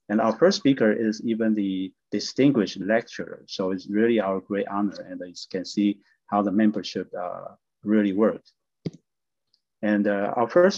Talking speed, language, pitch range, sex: 160 wpm, English, 105-130 Hz, male